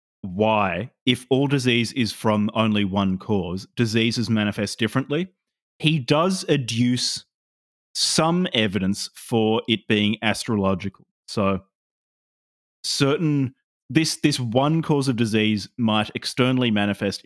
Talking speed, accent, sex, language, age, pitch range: 110 wpm, Australian, male, English, 30-49, 100-125 Hz